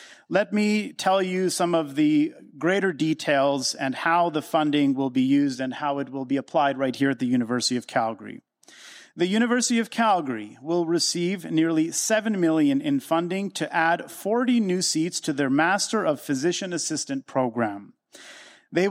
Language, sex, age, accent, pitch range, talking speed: English, male, 40-59, American, 145-205 Hz, 170 wpm